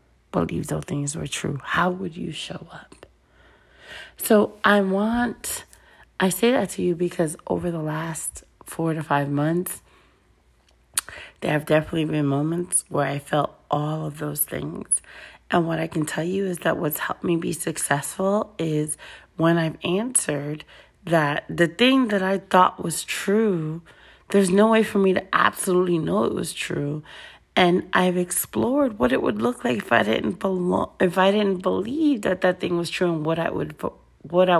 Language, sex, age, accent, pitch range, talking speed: English, female, 30-49, American, 145-185 Hz, 175 wpm